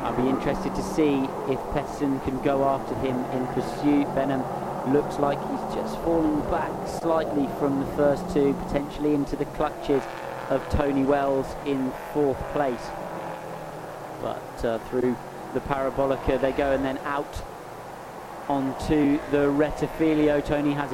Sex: male